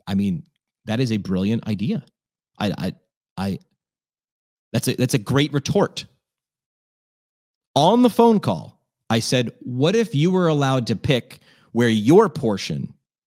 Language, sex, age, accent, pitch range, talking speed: English, male, 30-49, American, 115-150 Hz, 145 wpm